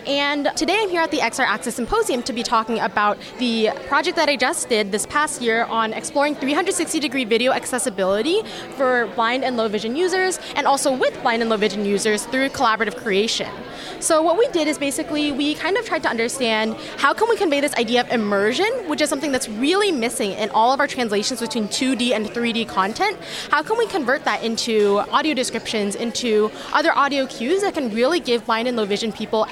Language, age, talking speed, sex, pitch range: English, 20-39, 205 wpm, female, 225-300 Hz